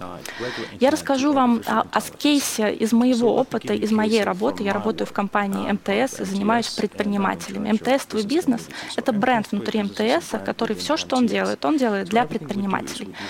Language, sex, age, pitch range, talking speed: Russian, female, 20-39, 205-245 Hz, 165 wpm